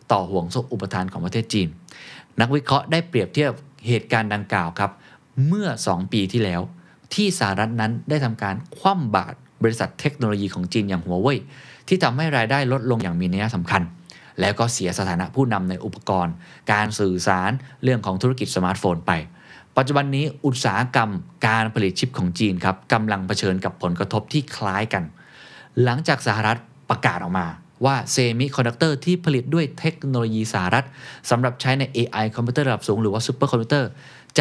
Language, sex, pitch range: Thai, male, 105-135 Hz